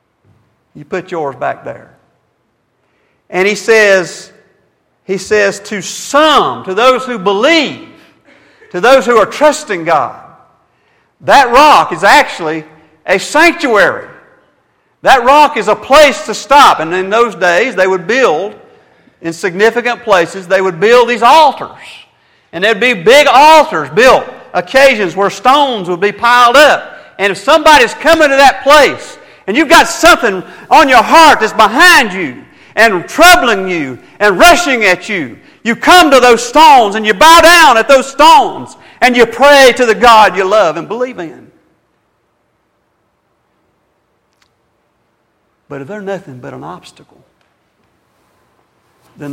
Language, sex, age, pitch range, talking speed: English, male, 50-69, 185-285 Hz, 145 wpm